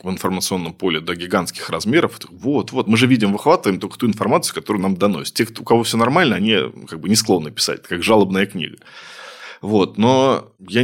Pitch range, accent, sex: 95-115 Hz, native, male